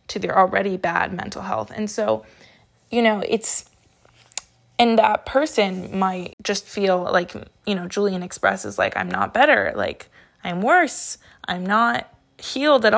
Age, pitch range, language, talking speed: 20-39, 185-225 Hz, English, 155 wpm